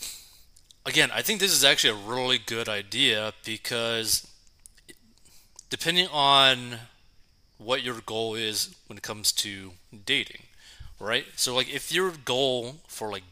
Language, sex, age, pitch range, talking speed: English, male, 30-49, 105-125 Hz, 135 wpm